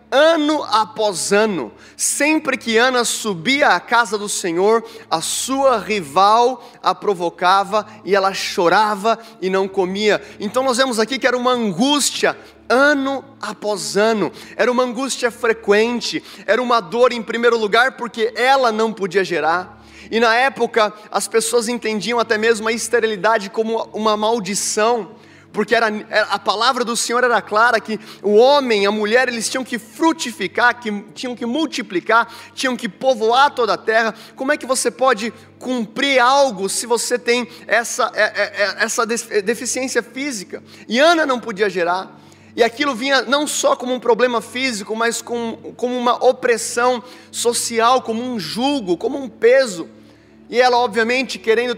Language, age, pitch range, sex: Portuguese, 20-39, 215-255 Hz, male